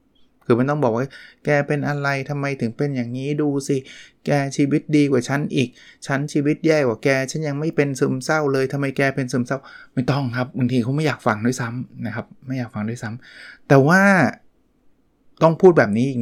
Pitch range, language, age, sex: 120-145 Hz, Thai, 20-39, male